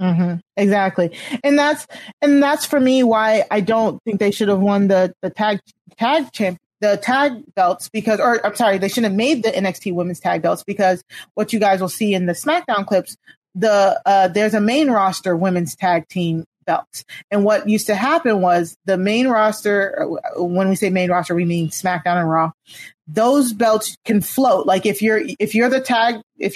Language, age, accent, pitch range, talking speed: English, 30-49, American, 185-230 Hz, 200 wpm